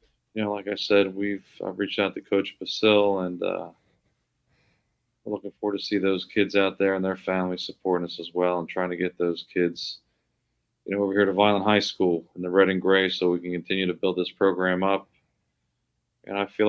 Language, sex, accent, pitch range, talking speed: English, male, American, 90-100 Hz, 220 wpm